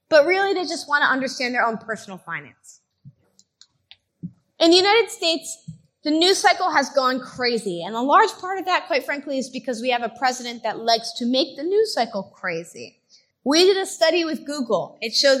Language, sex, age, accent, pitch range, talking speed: Croatian, female, 20-39, American, 240-330 Hz, 200 wpm